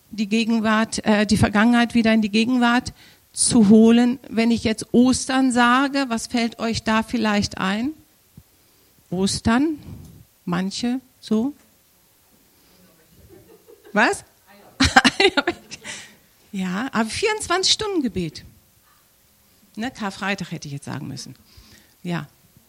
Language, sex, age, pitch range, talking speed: German, female, 50-69, 185-240 Hz, 105 wpm